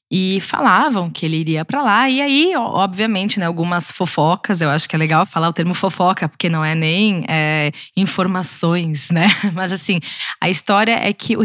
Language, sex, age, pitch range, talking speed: Portuguese, female, 20-39, 170-230 Hz, 190 wpm